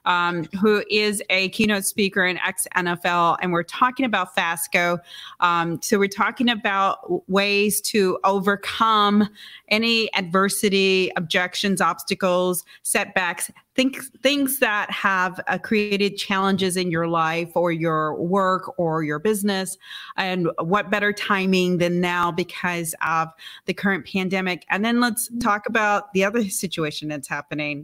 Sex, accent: female, American